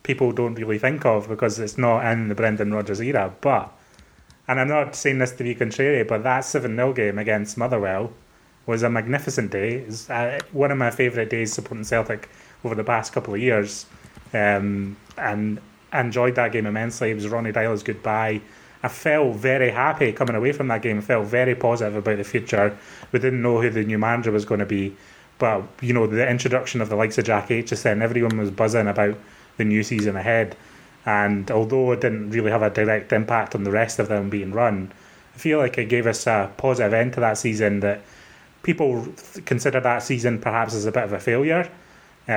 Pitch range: 105-120 Hz